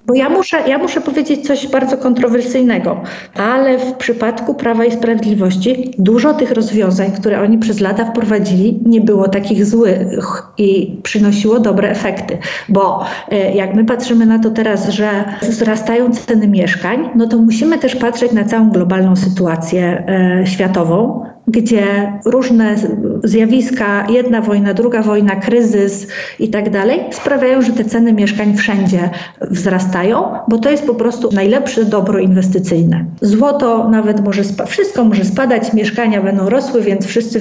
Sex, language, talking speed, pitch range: female, Polish, 145 wpm, 200-245 Hz